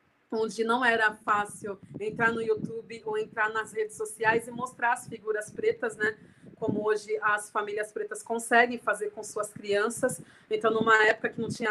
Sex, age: female, 30-49